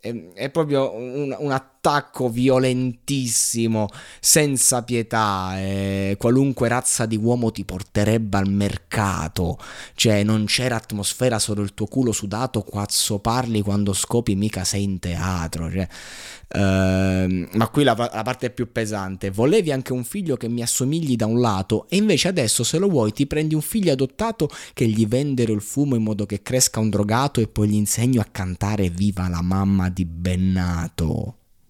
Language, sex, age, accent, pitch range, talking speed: Italian, male, 20-39, native, 100-125 Hz, 165 wpm